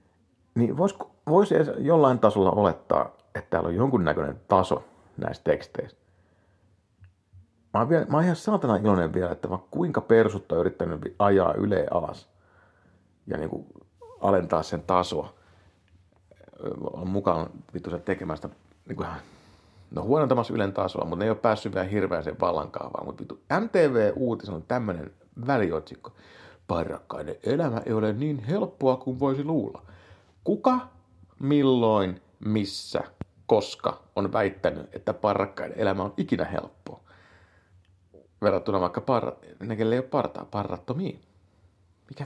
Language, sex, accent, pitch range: Finnish, male, native, 90-125 Hz